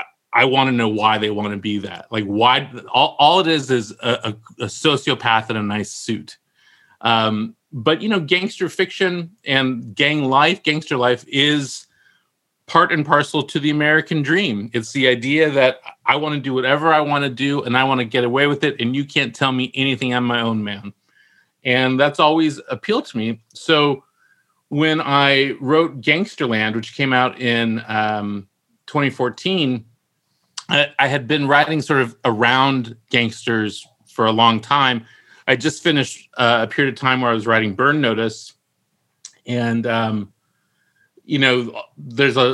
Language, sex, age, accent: English, male, 30-49, American